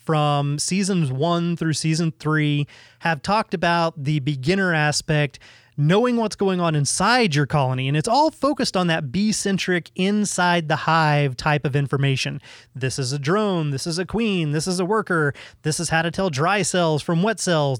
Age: 30-49